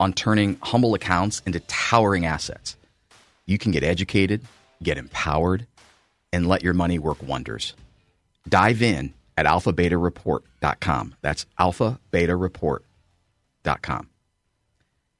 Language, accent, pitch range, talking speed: English, American, 85-115 Hz, 100 wpm